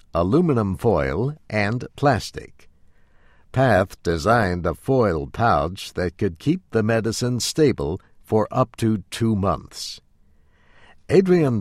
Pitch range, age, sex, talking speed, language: 80-120 Hz, 60-79, male, 110 wpm, English